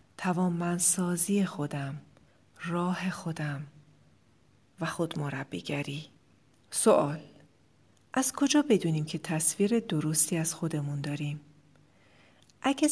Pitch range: 155-205 Hz